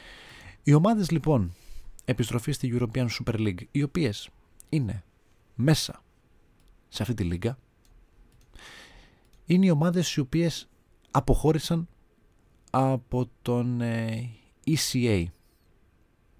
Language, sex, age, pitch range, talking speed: Greek, male, 40-59, 105-135 Hz, 90 wpm